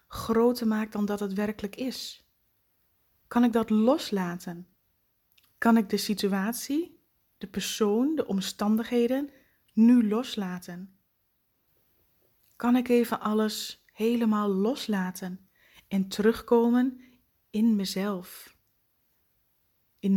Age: 20-39